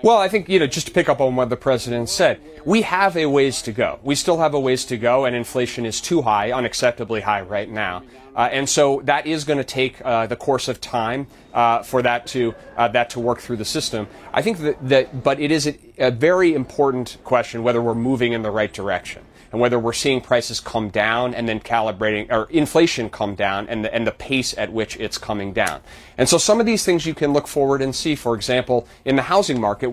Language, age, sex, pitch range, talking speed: English, 30-49, male, 110-135 Hz, 240 wpm